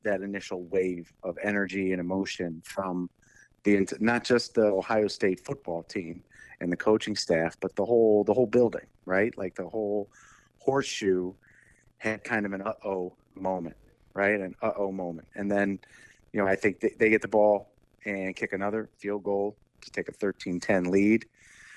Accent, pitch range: American, 95-105 Hz